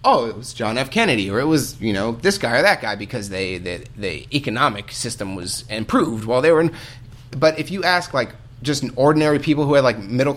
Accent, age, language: American, 30-49, English